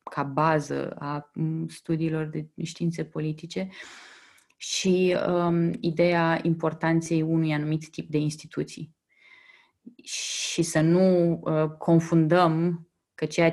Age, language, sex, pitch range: 20-39, Romanian, female, 155-170 Hz